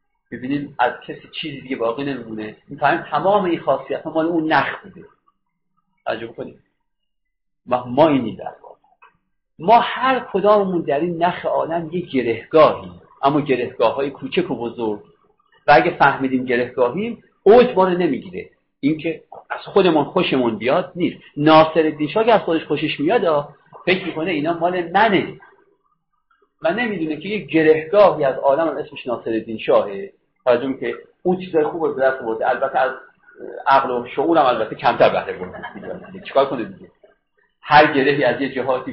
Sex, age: male, 50-69